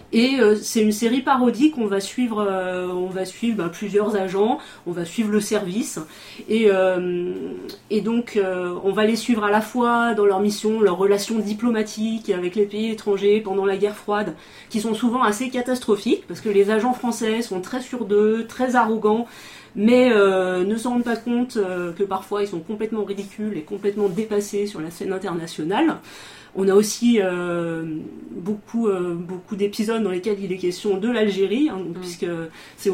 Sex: female